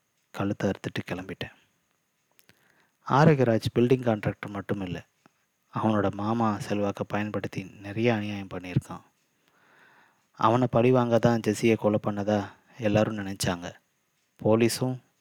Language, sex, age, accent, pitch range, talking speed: Tamil, male, 20-39, native, 100-115 Hz, 100 wpm